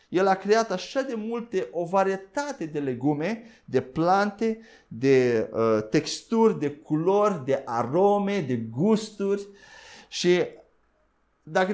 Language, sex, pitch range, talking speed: Romanian, male, 155-210 Hz, 110 wpm